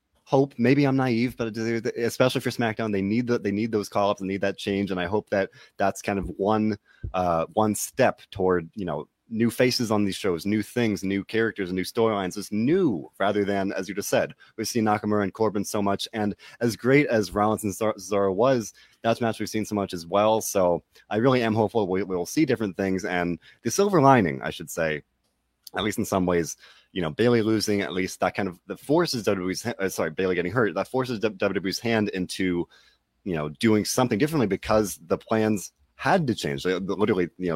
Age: 30-49